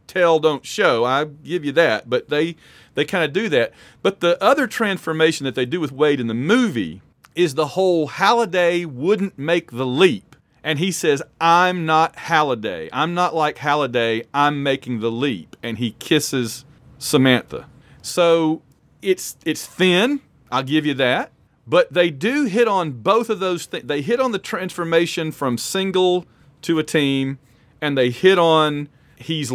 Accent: American